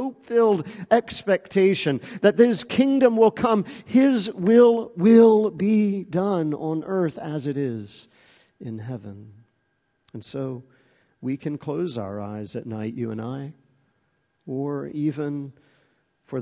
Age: 50-69